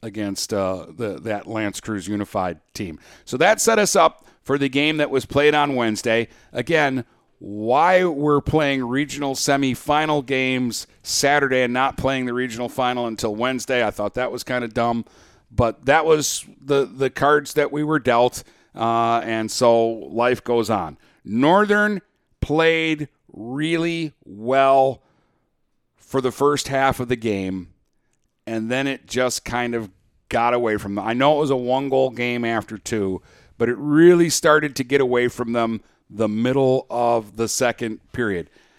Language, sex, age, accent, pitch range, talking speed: English, male, 50-69, American, 115-145 Hz, 160 wpm